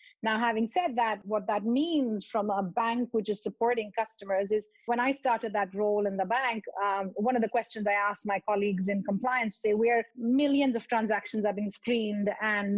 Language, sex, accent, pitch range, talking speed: English, female, Indian, 200-235 Hz, 200 wpm